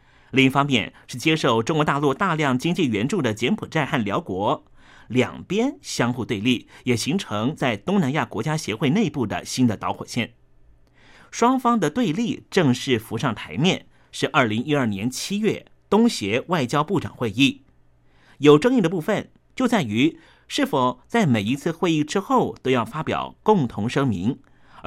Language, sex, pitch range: Chinese, male, 120-200 Hz